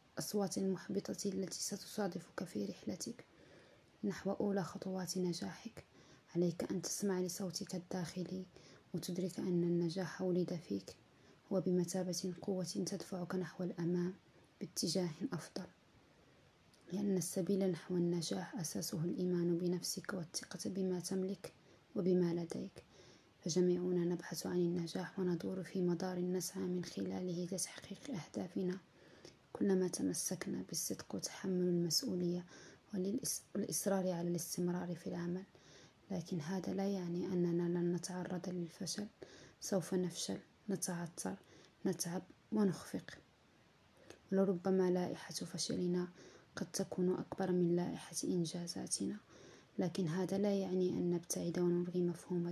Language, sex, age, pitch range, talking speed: Arabic, female, 20-39, 175-190 Hz, 105 wpm